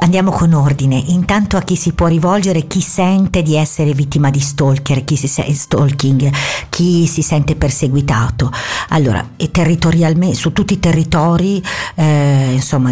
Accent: native